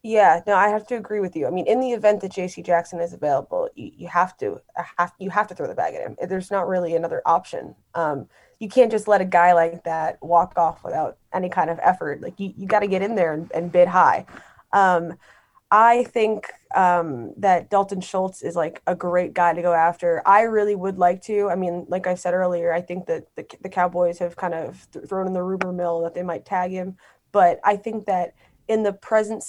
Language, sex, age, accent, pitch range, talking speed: English, female, 20-39, American, 175-205 Hz, 240 wpm